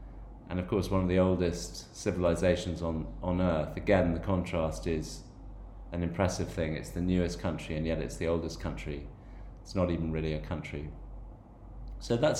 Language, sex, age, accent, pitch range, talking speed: English, male, 30-49, British, 80-95 Hz, 175 wpm